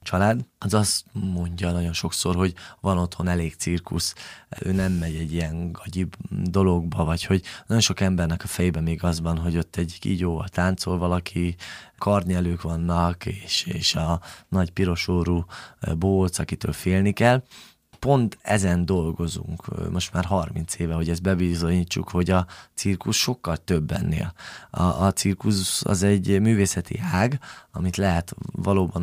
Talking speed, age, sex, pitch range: 145 wpm, 20-39, male, 85-100 Hz